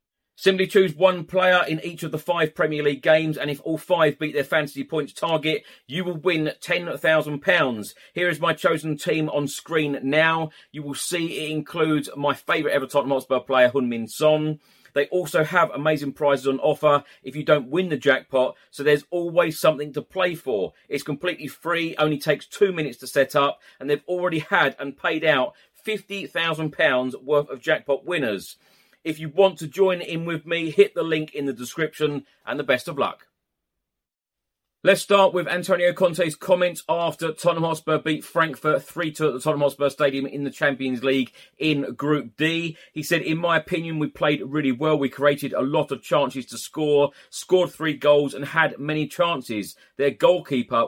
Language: English